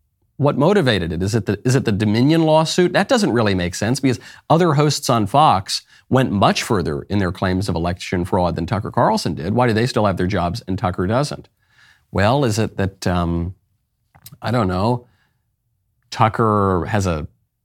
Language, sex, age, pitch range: English, male, 40-59, 100-130 Hz